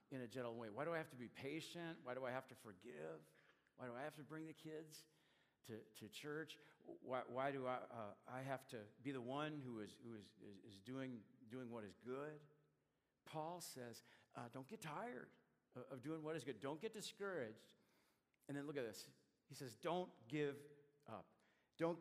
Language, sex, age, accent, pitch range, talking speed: English, male, 50-69, American, 110-145 Hz, 200 wpm